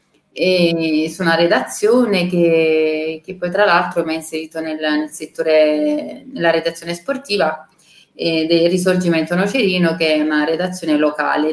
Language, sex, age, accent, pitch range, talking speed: Italian, female, 30-49, native, 160-190 Hz, 140 wpm